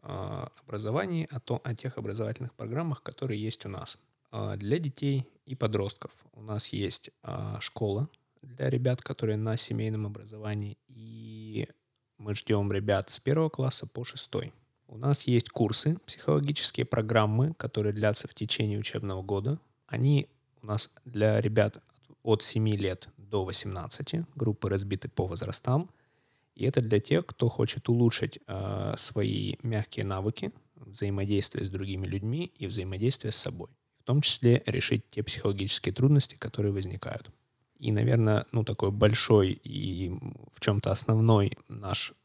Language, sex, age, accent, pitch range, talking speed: Russian, male, 20-39, native, 105-130 Hz, 140 wpm